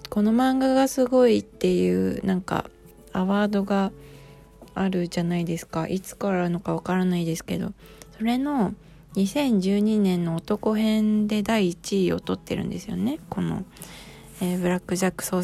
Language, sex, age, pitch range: Japanese, female, 20-39, 180-220 Hz